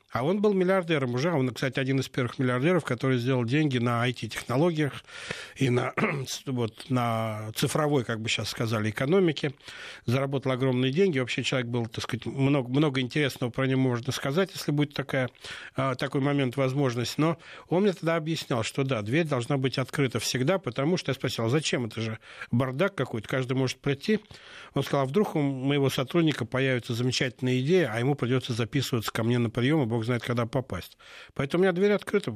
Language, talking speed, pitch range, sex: Russian, 180 wpm, 120-145 Hz, male